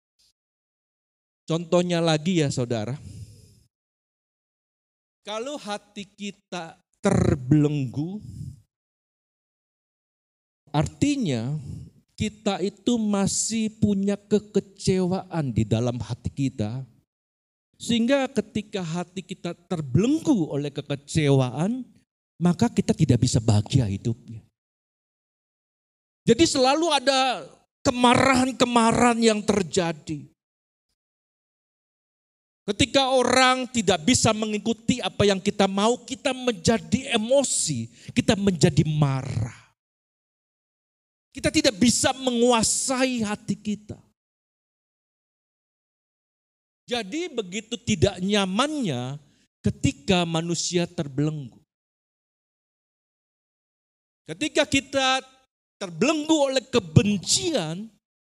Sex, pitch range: male, 150-245 Hz